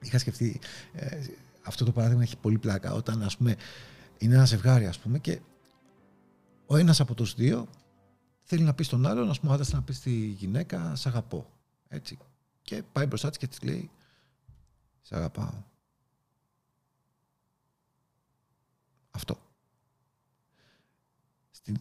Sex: male